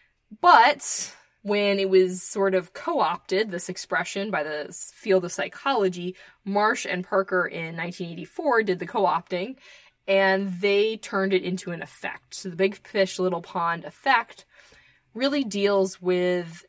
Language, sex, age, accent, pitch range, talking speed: English, female, 20-39, American, 180-200 Hz, 140 wpm